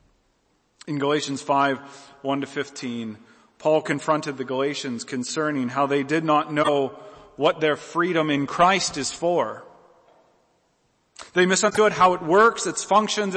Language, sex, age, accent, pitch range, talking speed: English, male, 40-59, American, 150-200 Hz, 125 wpm